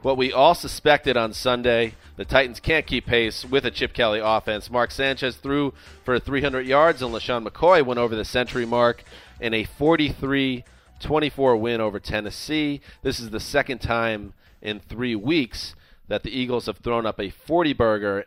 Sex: male